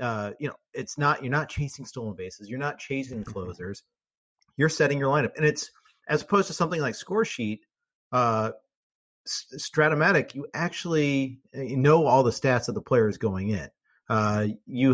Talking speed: 170 wpm